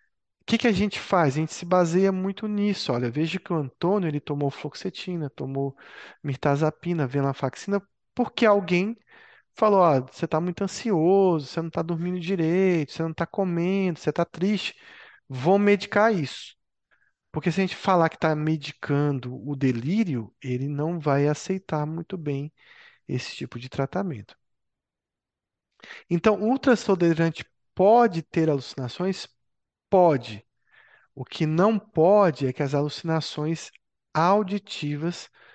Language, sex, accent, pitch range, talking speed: Portuguese, male, Brazilian, 140-190 Hz, 140 wpm